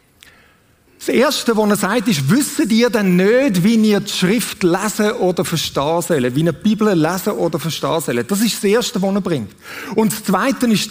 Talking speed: 200 wpm